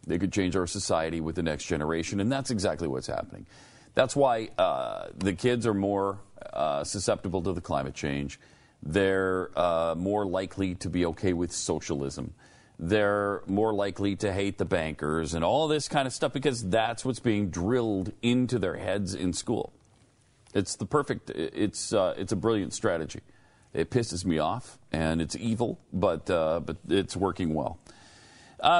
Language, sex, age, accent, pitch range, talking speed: English, male, 40-59, American, 95-120 Hz, 170 wpm